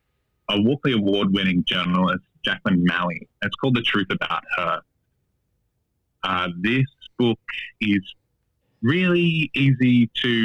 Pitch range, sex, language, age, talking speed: 95-115 Hz, male, English, 30-49, 110 wpm